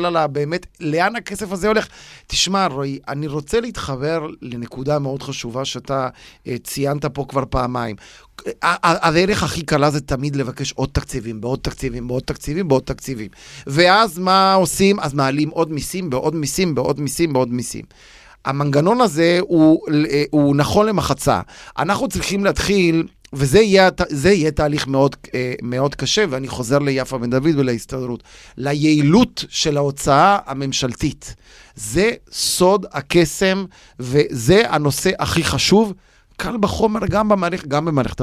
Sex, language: male, Hebrew